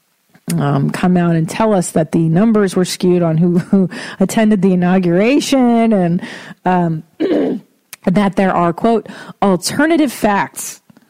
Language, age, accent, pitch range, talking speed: English, 40-59, American, 175-215 Hz, 135 wpm